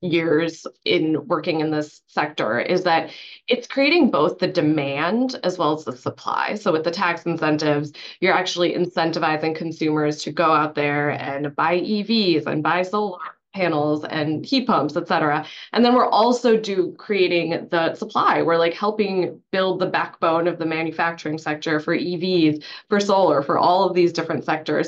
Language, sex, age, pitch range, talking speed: English, female, 20-39, 160-210 Hz, 170 wpm